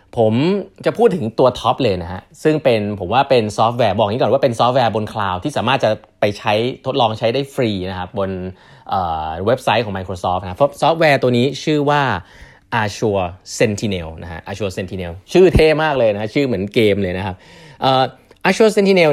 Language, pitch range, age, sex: Thai, 100-145 Hz, 20-39, male